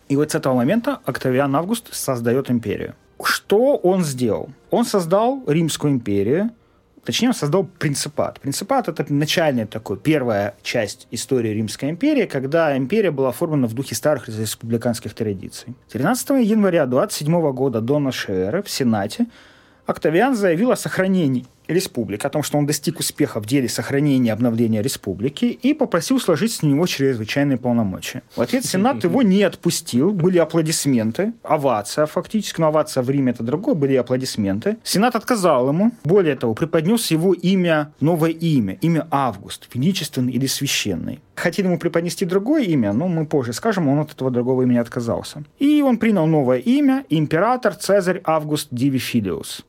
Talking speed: 155 wpm